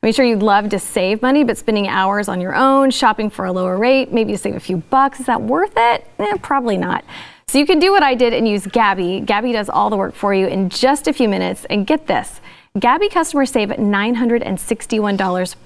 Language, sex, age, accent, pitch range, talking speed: English, female, 30-49, American, 190-250 Hz, 230 wpm